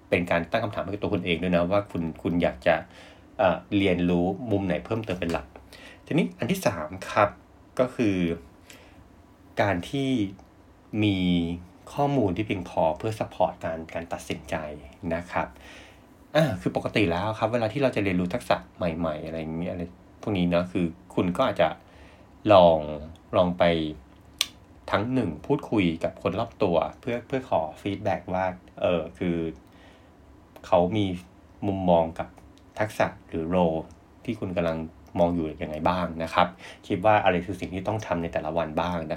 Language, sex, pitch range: English, male, 85-105 Hz